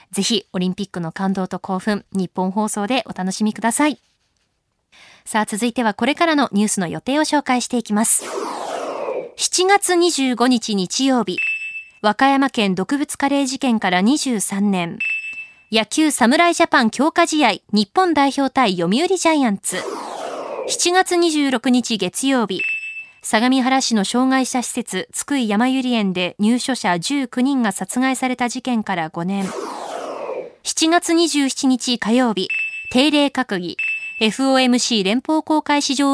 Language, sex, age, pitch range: Japanese, female, 20-39, 205-295 Hz